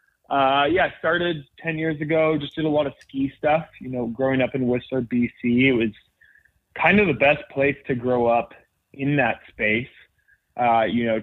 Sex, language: male, English